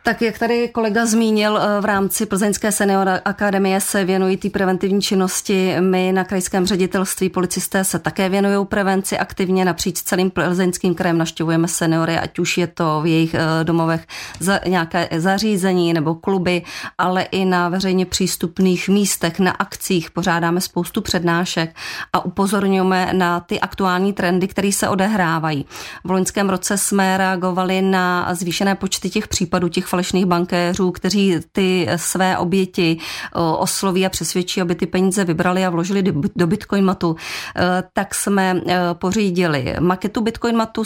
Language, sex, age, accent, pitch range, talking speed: Czech, female, 30-49, native, 170-195 Hz, 140 wpm